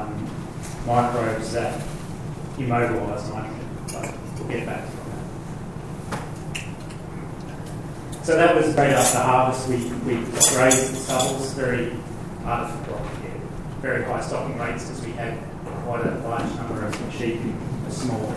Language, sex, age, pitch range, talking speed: English, male, 30-49, 115-155 Hz, 130 wpm